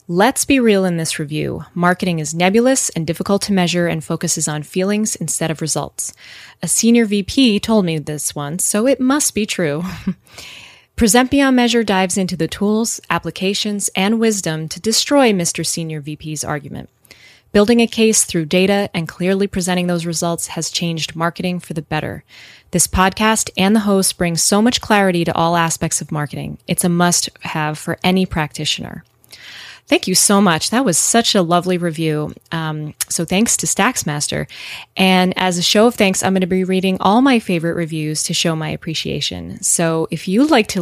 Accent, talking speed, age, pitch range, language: American, 180 wpm, 20-39, 160-205 Hz, English